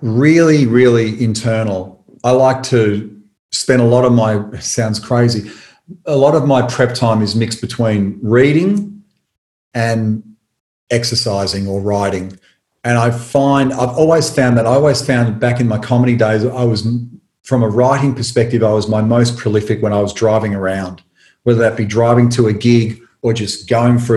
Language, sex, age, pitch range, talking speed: English, male, 40-59, 110-125 Hz, 170 wpm